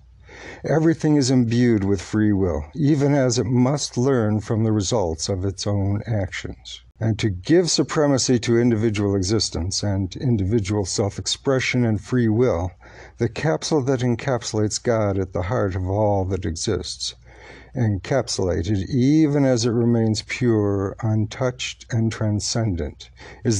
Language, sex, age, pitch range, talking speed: English, male, 60-79, 105-130 Hz, 135 wpm